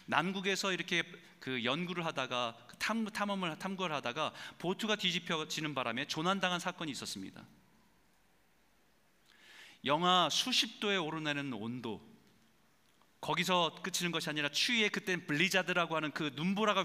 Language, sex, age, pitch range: Korean, male, 40-59, 145-200 Hz